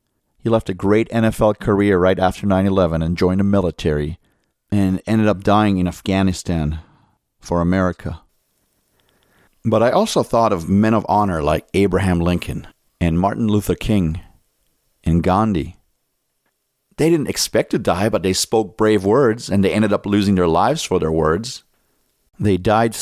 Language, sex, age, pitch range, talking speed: English, male, 40-59, 95-120 Hz, 155 wpm